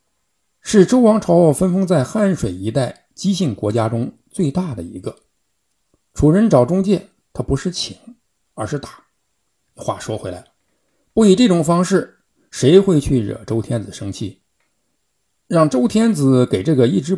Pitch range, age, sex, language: 105-170 Hz, 60-79, male, Chinese